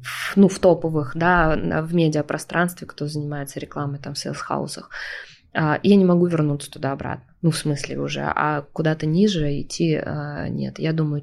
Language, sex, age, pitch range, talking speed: Russian, female, 20-39, 155-190 Hz, 170 wpm